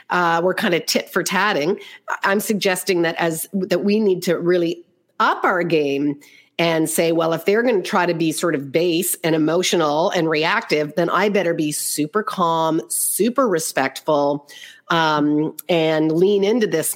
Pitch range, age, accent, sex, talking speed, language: 170-215 Hz, 40-59, American, female, 175 wpm, English